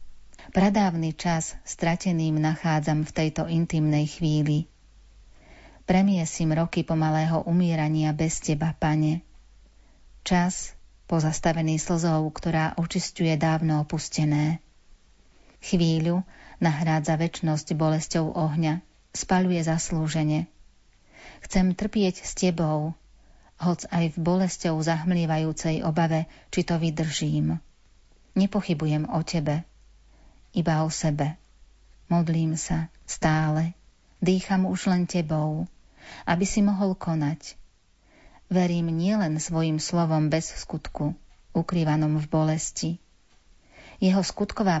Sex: female